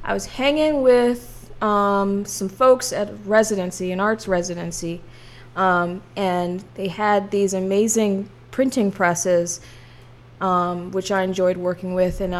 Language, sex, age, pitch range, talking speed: English, female, 20-39, 175-215 Hz, 135 wpm